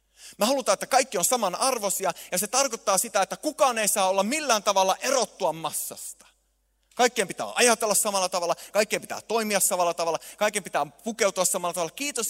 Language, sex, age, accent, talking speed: Finnish, male, 30-49, native, 170 wpm